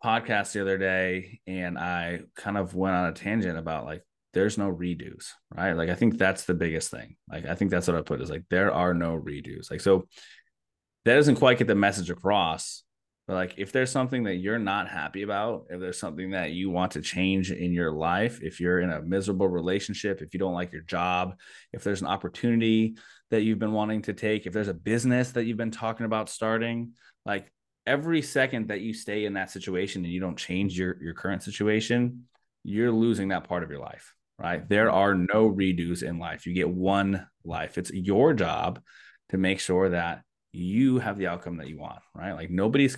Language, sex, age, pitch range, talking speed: English, male, 20-39, 90-115 Hz, 210 wpm